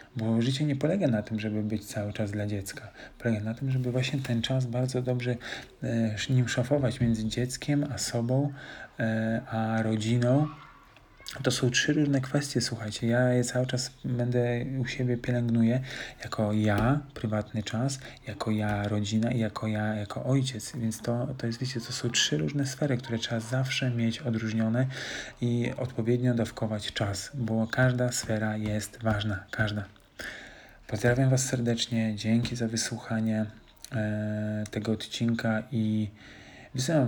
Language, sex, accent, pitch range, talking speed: Polish, male, native, 110-125 Hz, 150 wpm